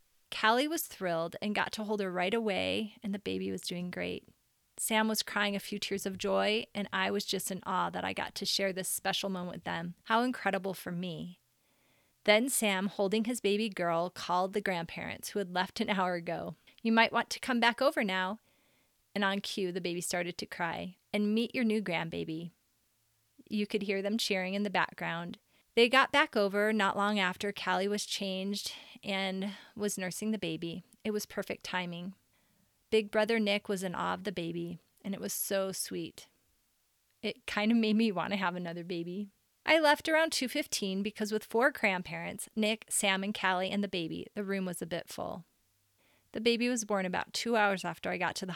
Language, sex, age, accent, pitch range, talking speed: English, female, 30-49, American, 180-215 Hz, 205 wpm